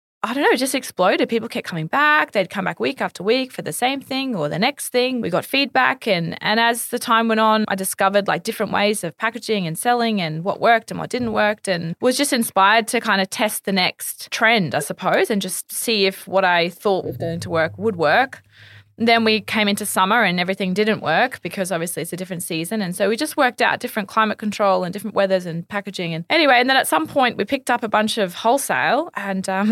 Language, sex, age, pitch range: English, female, 20-39, 185-225 Hz